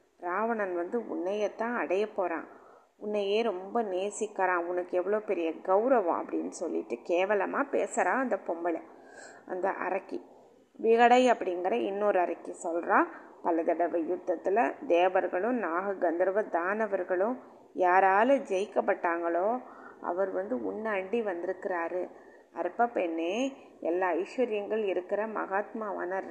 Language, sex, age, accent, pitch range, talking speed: Tamil, female, 20-39, native, 180-225 Hz, 100 wpm